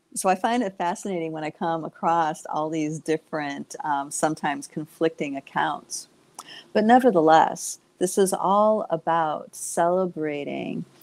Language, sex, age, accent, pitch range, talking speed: English, female, 50-69, American, 155-185 Hz, 125 wpm